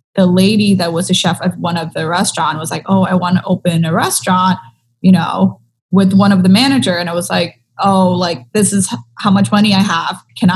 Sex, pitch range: female, 170-195 Hz